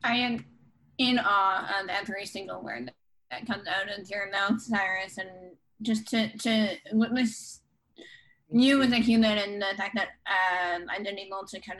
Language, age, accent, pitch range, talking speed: English, 20-39, American, 190-235 Hz, 170 wpm